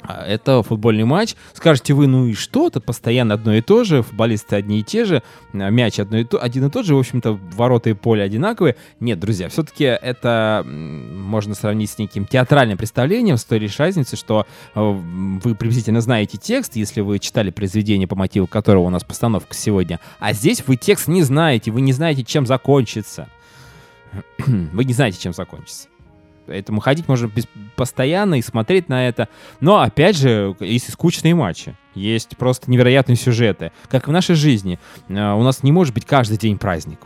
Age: 20-39